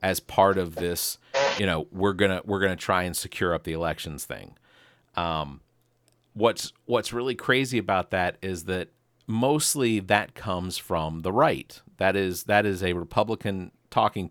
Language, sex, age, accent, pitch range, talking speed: English, male, 40-59, American, 85-105 Hz, 170 wpm